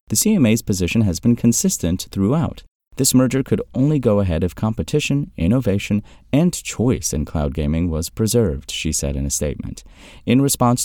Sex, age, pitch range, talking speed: male, 30-49, 80-105 Hz, 165 wpm